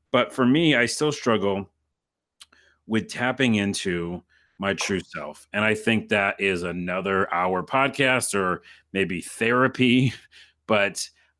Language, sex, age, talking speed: English, male, 30-49, 125 wpm